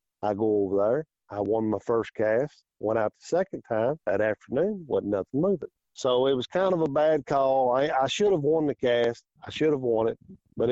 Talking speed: 225 wpm